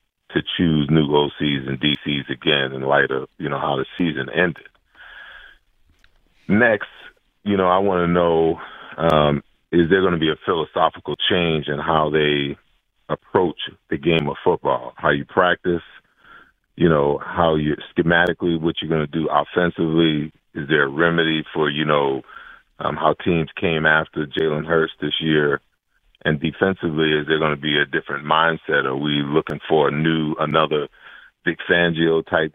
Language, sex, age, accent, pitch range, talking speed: English, male, 40-59, American, 75-80 Hz, 165 wpm